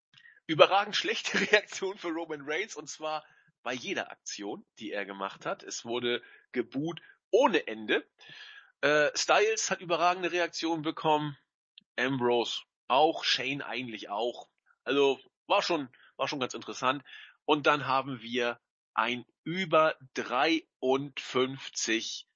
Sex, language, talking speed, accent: male, German, 120 wpm, German